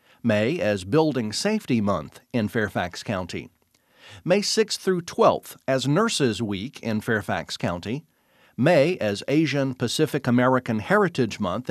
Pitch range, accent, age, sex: 115-170 Hz, American, 50-69, male